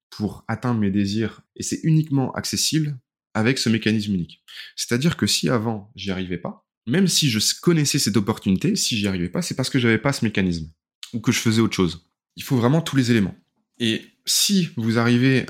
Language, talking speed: French, 200 wpm